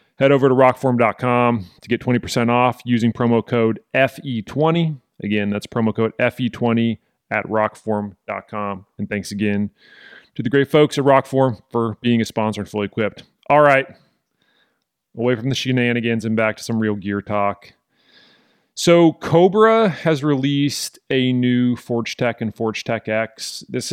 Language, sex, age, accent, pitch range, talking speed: English, male, 30-49, American, 110-135 Hz, 155 wpm